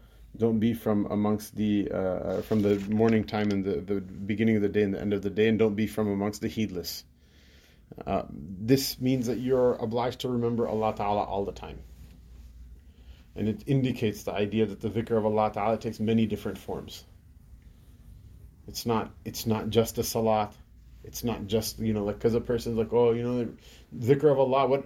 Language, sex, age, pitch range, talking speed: English, male, 30-49, 105-135 Hz, 200 wpm